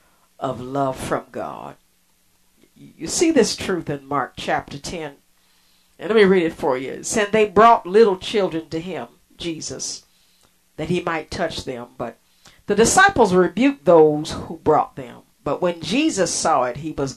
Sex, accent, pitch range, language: female, American, 125-195 Hz, English